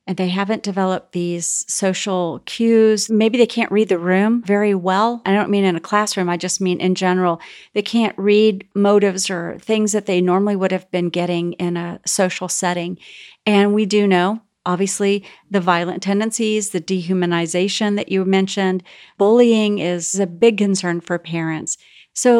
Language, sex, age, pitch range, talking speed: English, female, 40-59, 180-215 Hz, 170 wpm